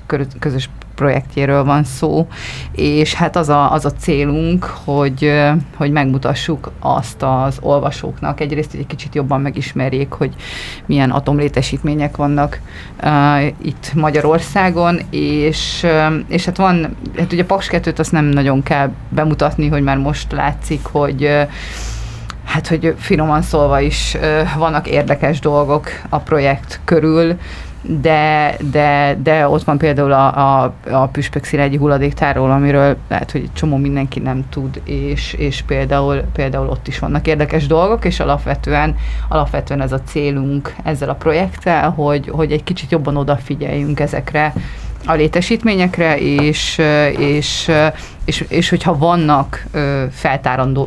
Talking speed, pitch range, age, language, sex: 125 wpm, 140-155 Hz, 30-49, Hungarian, female